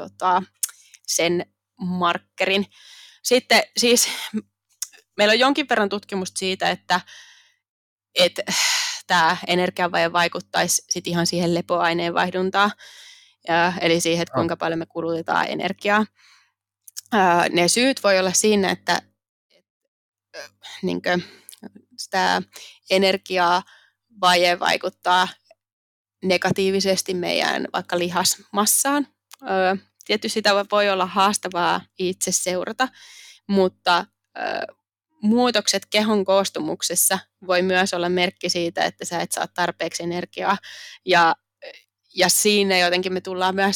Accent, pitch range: native, 180-205 Hz